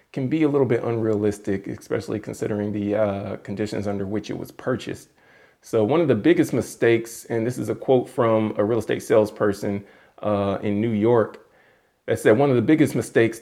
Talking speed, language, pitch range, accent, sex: 190 wpm, English, 105-120 Hz, American, male